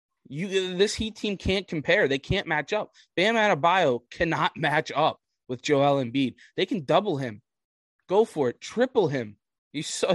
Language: English